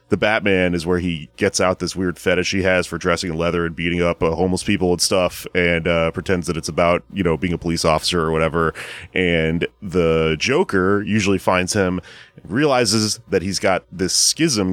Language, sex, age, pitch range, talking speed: English, male, 30-49, 85-115 Hz, 200 wpm